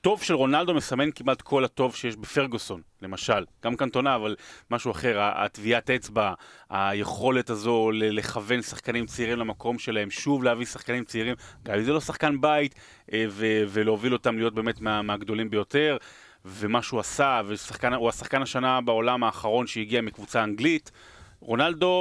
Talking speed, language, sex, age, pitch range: 155 wpm, Hebrew, male, 30-49, 110-140 Hz